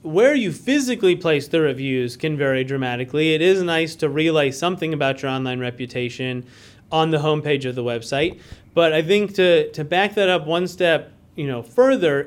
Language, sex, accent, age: English, male, American, 30-49